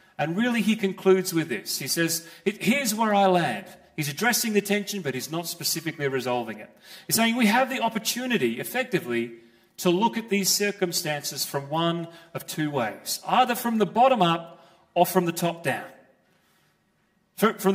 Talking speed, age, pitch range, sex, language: 170 wpm, 40-59, 175-225 Hz, male, English